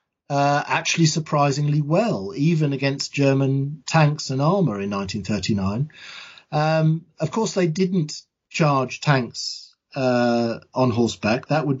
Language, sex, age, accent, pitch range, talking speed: English, male, 40-59, British, 130-155 Hz, 120 wpm